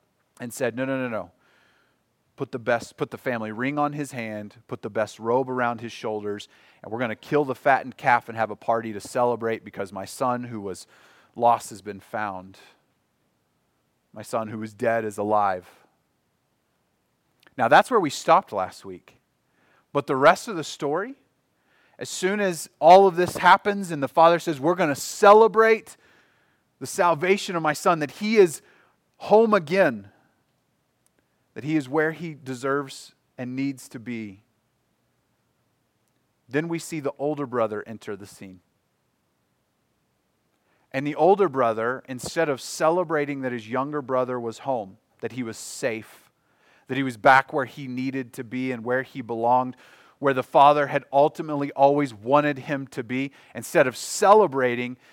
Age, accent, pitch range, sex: 30-49, American, 115-150 Hz, male